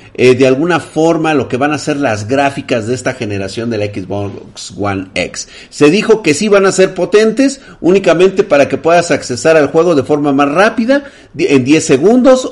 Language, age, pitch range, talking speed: Spanish, 40-59, 125-180 Hz, 190 wpm